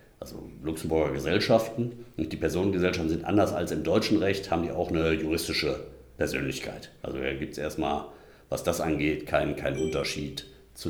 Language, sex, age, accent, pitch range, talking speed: German, male, 50-69, German, 70-95 Hz, 165 wpm